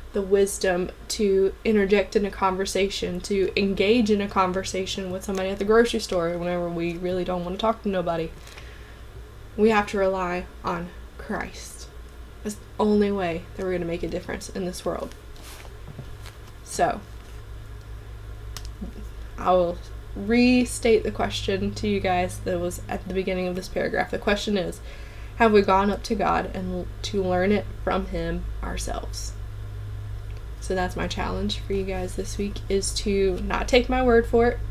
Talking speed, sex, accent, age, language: 170 wpm, female, American, 20-39, English